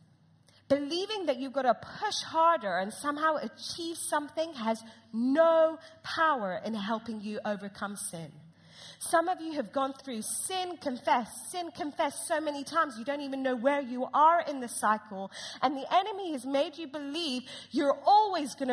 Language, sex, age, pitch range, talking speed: English, female, 30-49, 195-280 Hz, 165 wpm